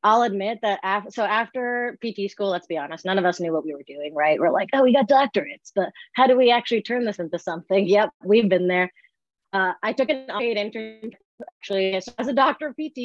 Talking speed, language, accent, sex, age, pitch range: 230 wpm, English, American, female, 30-49, 180-210 Hz